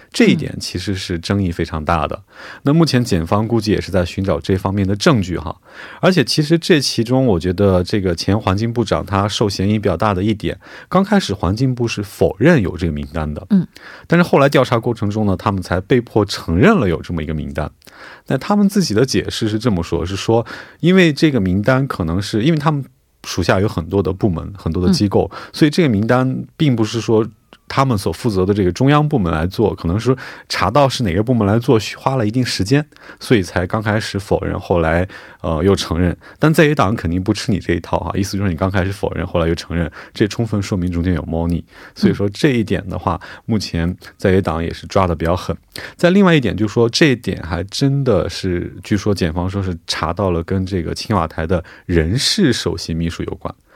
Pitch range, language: 90-125 Hz, Korean